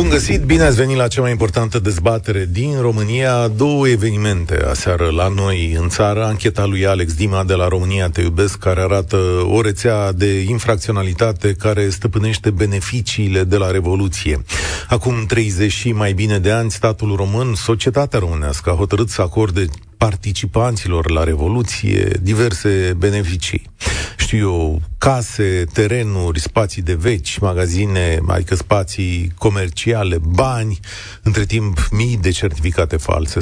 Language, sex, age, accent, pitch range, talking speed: Romanian, male, 40-59, native, 90-115 Hz, 140 wpm